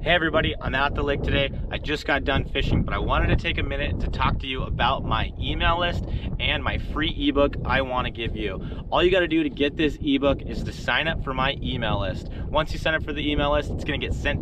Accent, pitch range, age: American, 100-140 Hz, 30-49